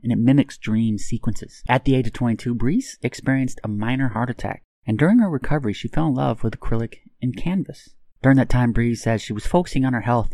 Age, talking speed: 30-49, 225 wpm